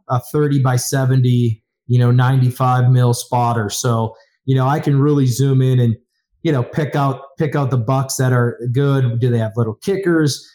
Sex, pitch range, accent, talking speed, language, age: male, 125-155 Hz, American, 195 wpm, English, 30-49